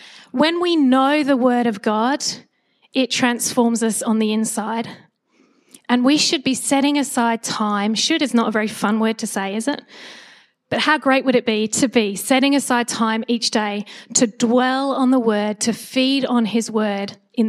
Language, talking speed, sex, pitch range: English, 190 wpm, female, 230-280 Hz